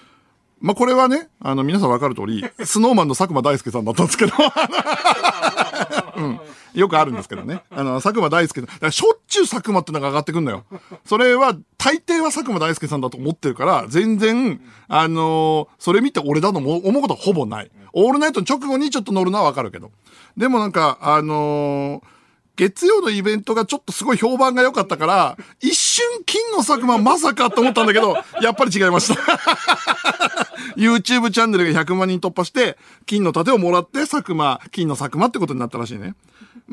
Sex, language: male, Japanese